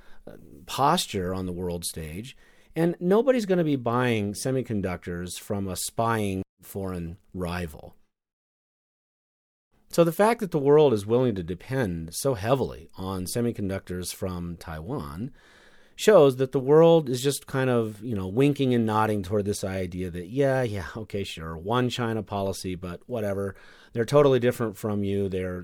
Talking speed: 150 wpm